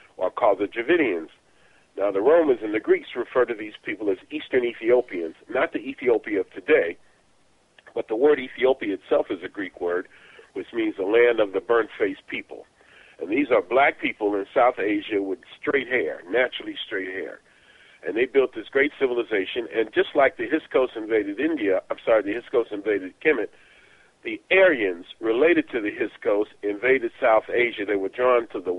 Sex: male